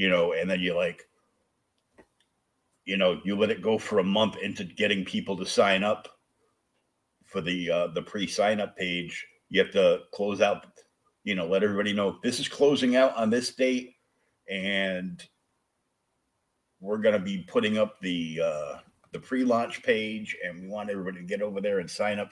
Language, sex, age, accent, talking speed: English, male, 60-79, American, 185 wpm